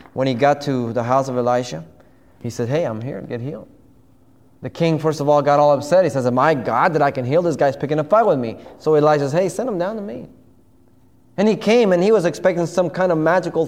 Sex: male